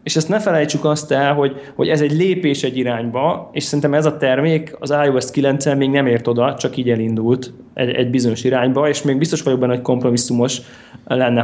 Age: 20-39